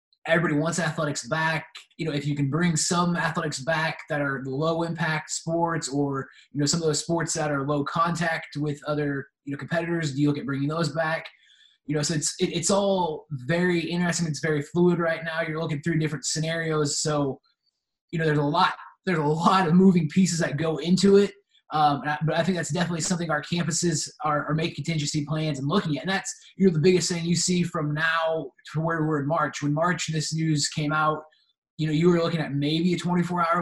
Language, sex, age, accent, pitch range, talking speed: English, male, 20-39, American, 150-170 Hz, 220 wpm